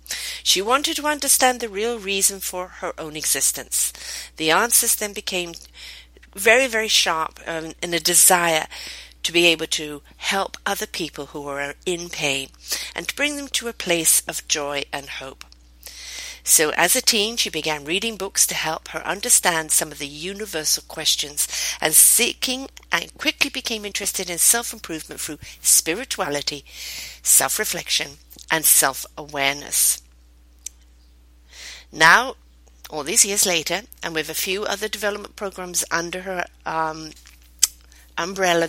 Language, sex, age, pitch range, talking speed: English, female, 50-69, 145-205 Hz, 140 wpm